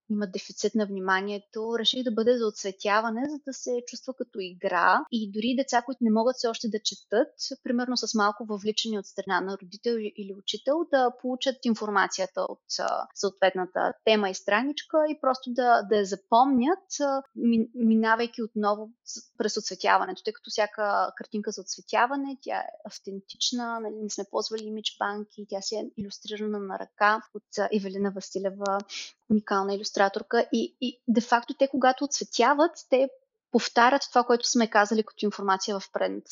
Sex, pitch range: female, 205-250 Hz